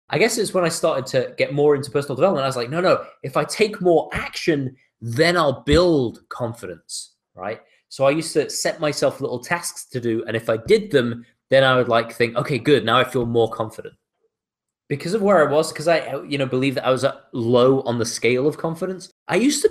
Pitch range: 135-185 Hz